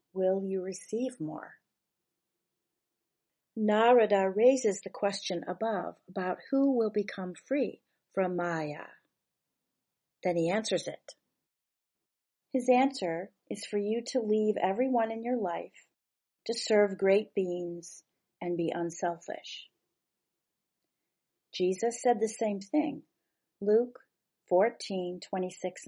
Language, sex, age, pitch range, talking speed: English, female, 40-59, 175-225 Hz, 105 wpm